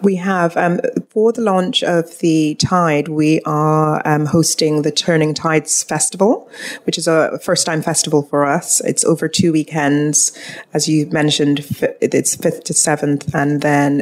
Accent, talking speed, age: British, 160 wpm, 30-49